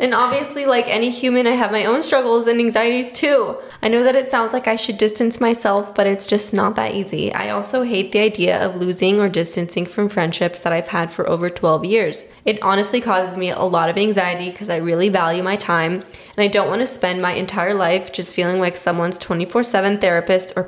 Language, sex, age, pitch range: English, female, 10-29, 180-225 Hz